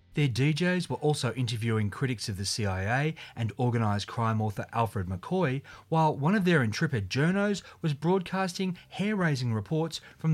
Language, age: English, 30-49